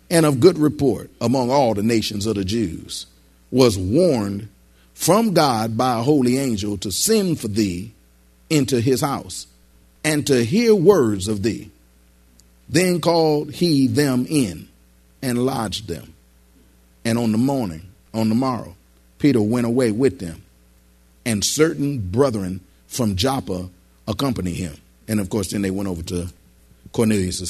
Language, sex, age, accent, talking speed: English, male, 40-59, American, 150 wpm